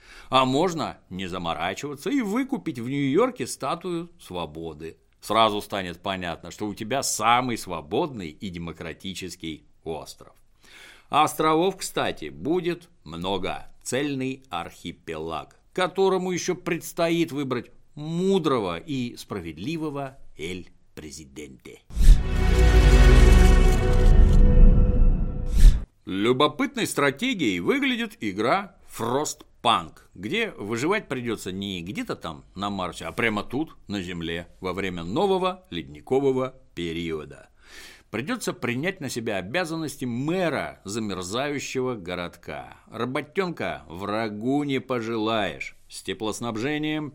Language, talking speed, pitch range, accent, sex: Russian, 95 wpm, 90-150 Hz, native, male